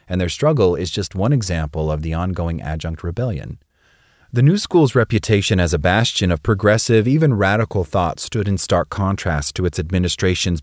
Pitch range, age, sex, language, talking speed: 85-110 Hz, 30-49, male, English, 175 wpm